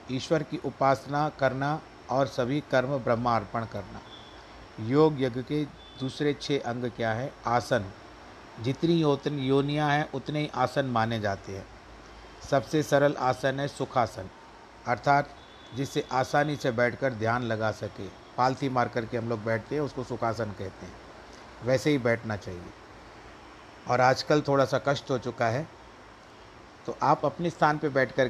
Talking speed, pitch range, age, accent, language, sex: 145 wpm, 115-140 Hz, 50-69, native, Hindi, male